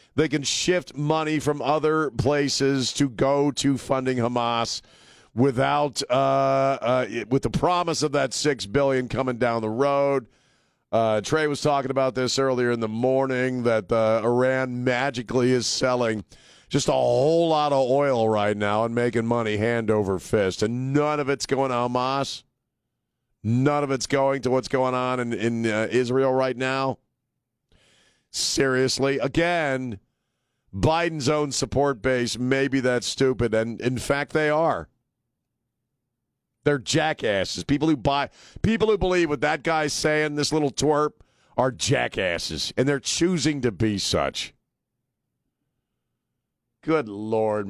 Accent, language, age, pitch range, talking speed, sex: American, English, 40-59, 115-140 Hz, 145 wpm, male